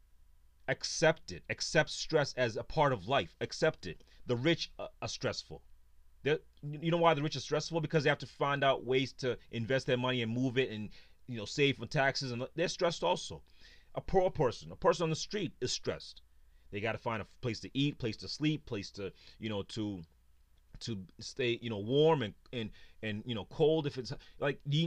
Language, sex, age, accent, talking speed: English, male, 30-49, American, 210 wpm